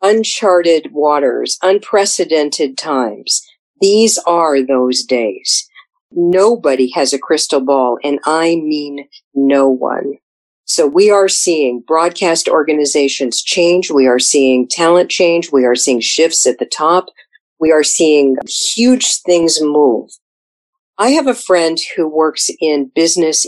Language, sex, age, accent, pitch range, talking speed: English, female, 50-69, American, 135-175 Hz, 130 wpm